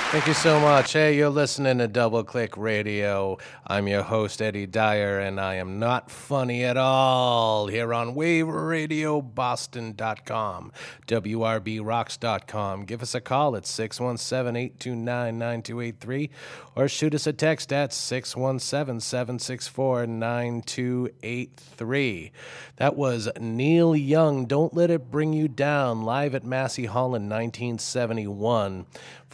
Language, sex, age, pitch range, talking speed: English, male, 30-49, 110-135 Hz, 115 wpm